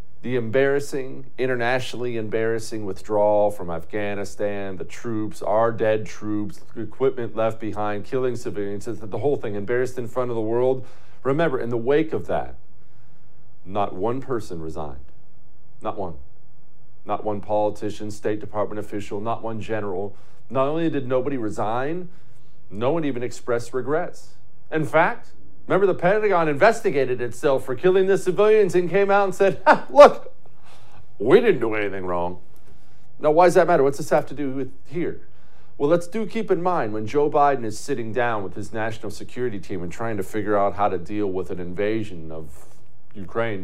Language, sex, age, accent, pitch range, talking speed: English, male, 40-59, American, 105-140 Hz, 170 wpm